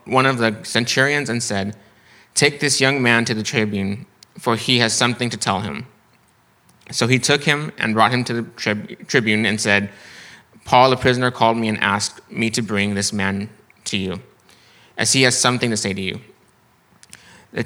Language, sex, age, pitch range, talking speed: English, male, 20-39, 105-125 Hz, 185 wpm